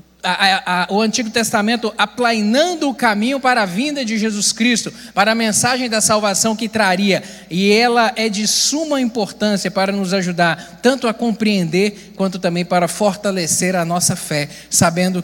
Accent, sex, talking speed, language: Brazilian, male, 165 wpm, Portuguese